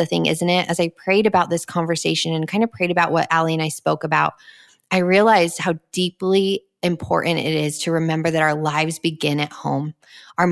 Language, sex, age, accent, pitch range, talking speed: English, female, 20-39, American, 160-200 Hz, 210 wpm